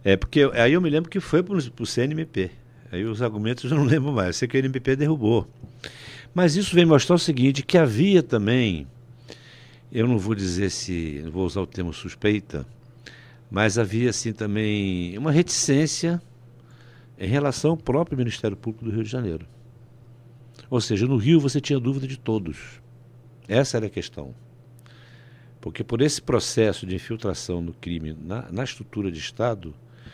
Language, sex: Portuguese, male